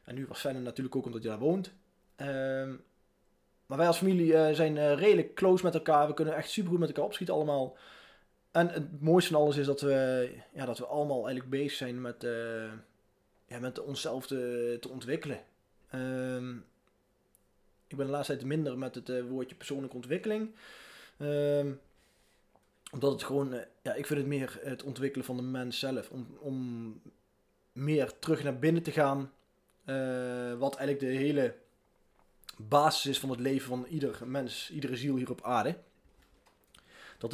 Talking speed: 175 wpm